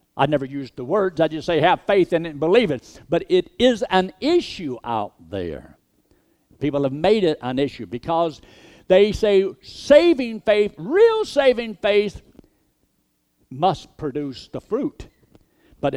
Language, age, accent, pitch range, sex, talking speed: English, 60-79, American, 120-175 Hz, male, 155 wpm